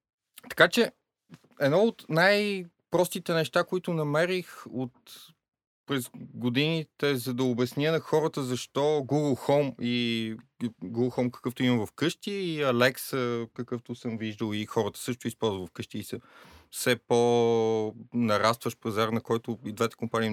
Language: Bulgarian